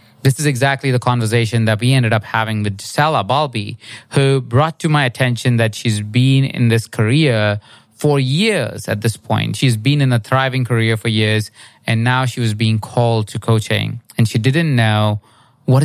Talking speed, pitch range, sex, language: 190 wpm, 110-130 Hz, male, English